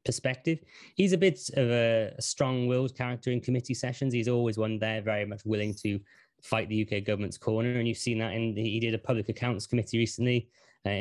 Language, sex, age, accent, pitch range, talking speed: English, male, 20-39, British, 110-125 Hz, 200 wpm